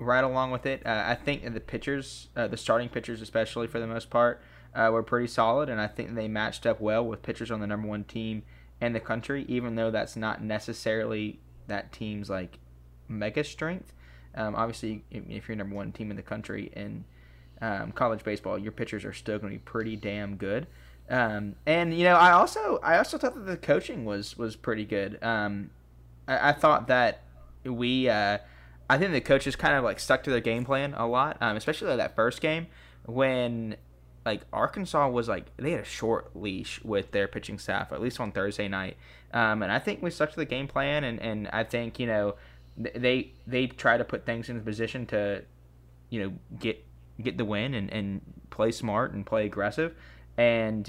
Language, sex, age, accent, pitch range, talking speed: English, male, 20-39, American, 100-120 Hz, 210 wpm